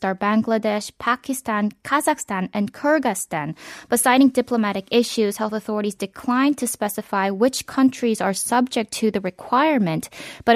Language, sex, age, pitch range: Korean, female, 10-29, 195-245 Hz